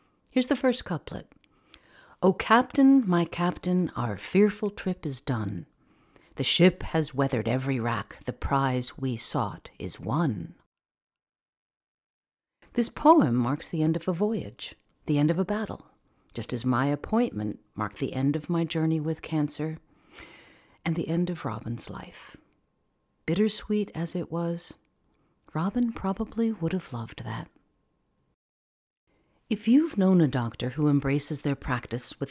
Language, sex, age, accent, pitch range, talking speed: English, female, 50-69, American, 130-195 Hz, 140 wpm